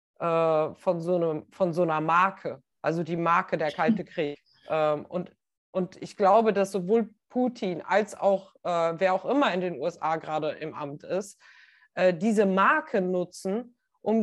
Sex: female